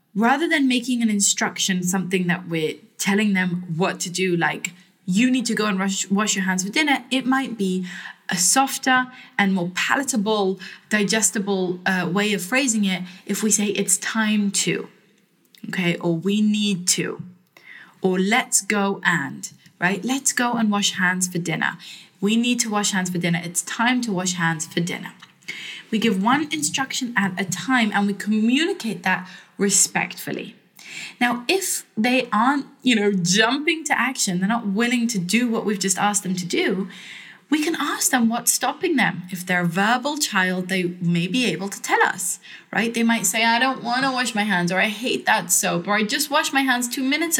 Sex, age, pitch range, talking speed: female, 20-39, 185-245 Hz, 190 wpm